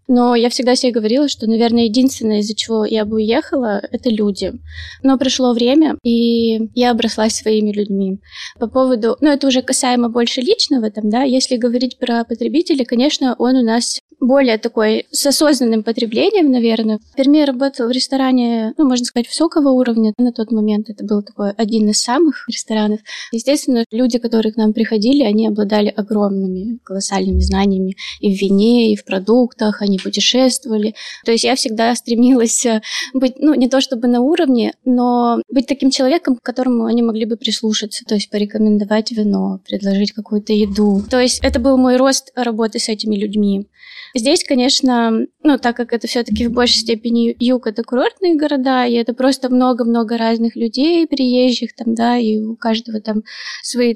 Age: 20-39